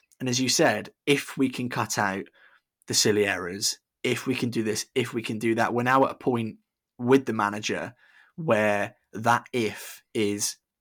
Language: English